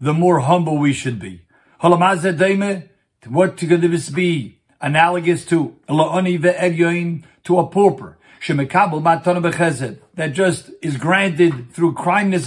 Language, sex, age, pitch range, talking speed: English, male, 50-69, 165-190 Hz, 100 wpm